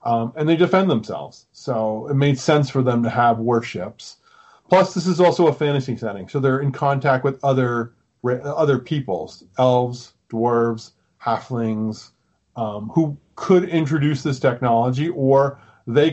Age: 30-49